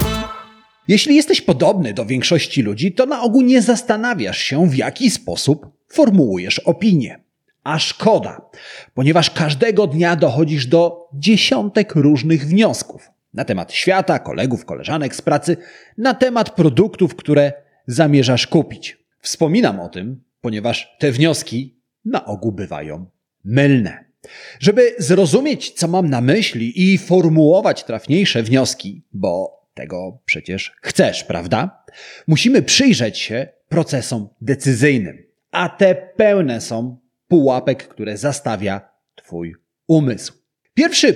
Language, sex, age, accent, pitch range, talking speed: Polish, male, 30-49, native, 130-200 Hz, 115 wpm